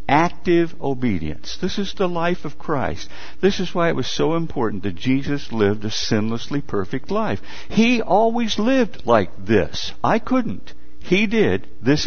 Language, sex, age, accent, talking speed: English, male, 60-79, American, 160 wpm